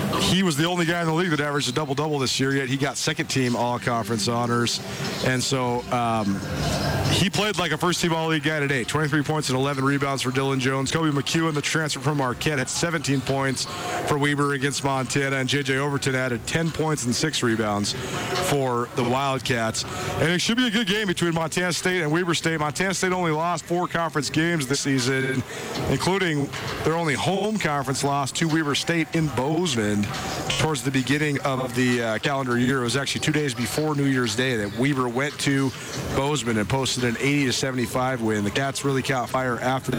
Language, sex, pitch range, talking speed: English, male, 130-160 Hz, 195 wpm